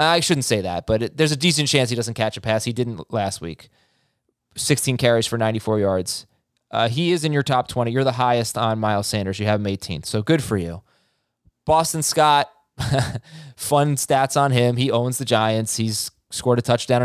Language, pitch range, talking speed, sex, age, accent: English, 110-145 Hz, 210 wpm, male, 20-39, American